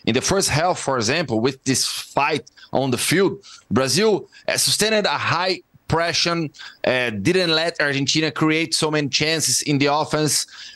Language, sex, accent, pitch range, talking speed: English, male, Brazilian, 135-175 Hz, 160 wpm